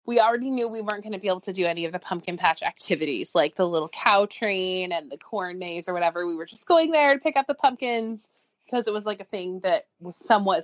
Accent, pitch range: American, 185-235 Hz